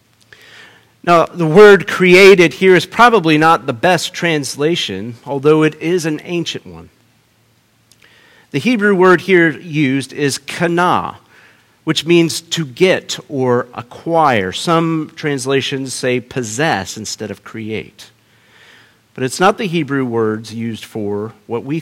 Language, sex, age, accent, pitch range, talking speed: English, male, 50-69, American, 115-180 Hz, 130 wpm